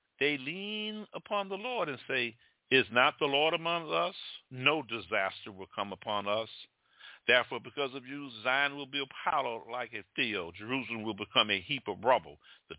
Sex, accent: male, American